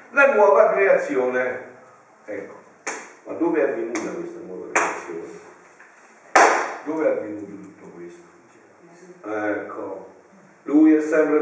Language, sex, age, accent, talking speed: Italian, male, 50-69, native, 105 wpm